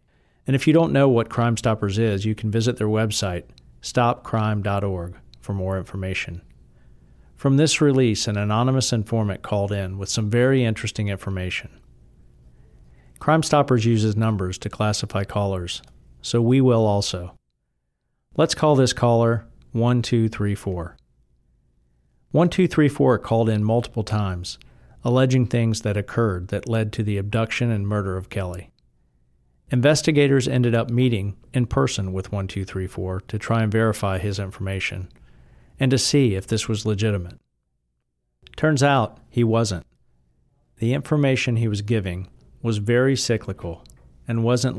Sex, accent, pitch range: male, American, 95-120 Hz